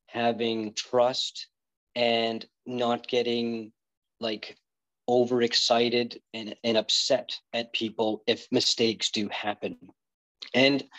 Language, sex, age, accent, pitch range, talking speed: English, male, 40-59, American, 110-130 Hz, 95 wpm